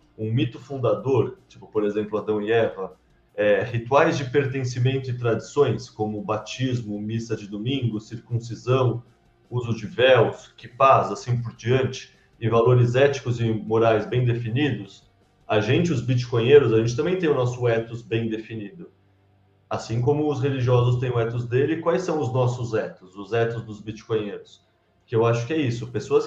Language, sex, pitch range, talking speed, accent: Portuguese, male, 115-140 Hz, 165 wpm, Brazilian